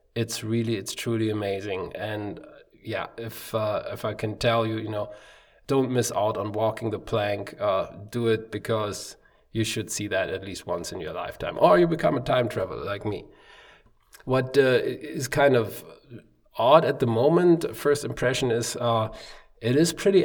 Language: English